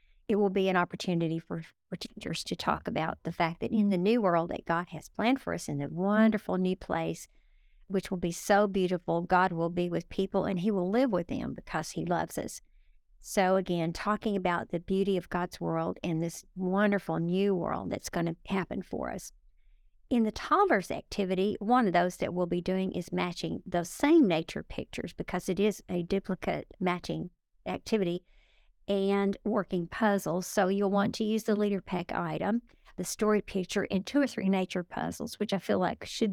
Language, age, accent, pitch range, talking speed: English, 50-69, American, 175-210 Hz, 195 wpm